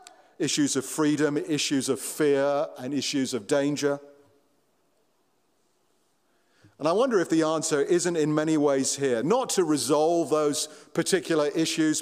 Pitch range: 135-165 Hz